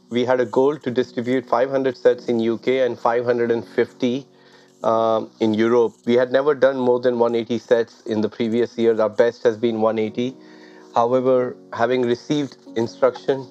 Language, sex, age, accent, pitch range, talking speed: English, male, 30-49, Indian, 115-130 Hz, 160 wpm